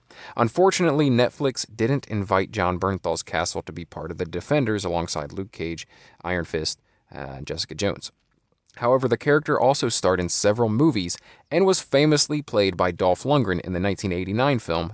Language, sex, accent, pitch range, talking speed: English, male, American, 90-120 Hz, 160 wpm